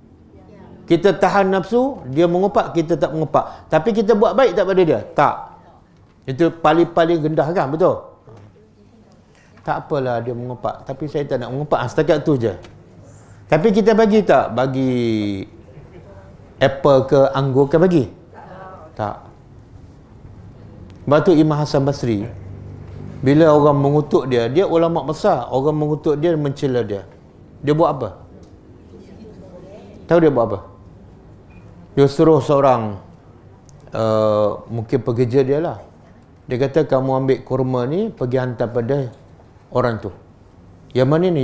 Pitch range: 110-150 Hz